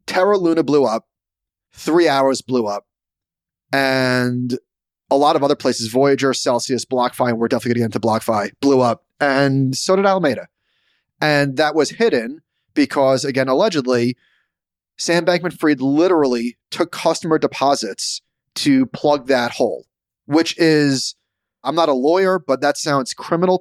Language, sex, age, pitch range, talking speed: English, male, 30-49, 130-175 Hz, 140 wpm